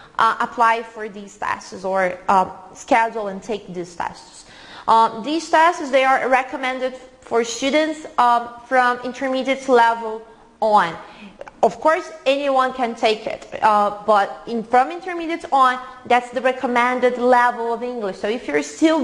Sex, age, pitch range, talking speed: female, 20-39, 230-275 Hz, 145 wpm